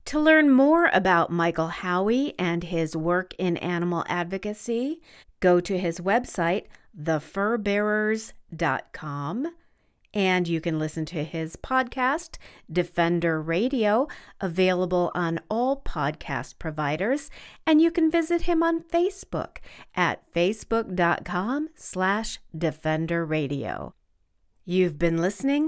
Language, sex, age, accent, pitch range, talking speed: English, female, 40-59, American, 160-235 Hz, 105 wpm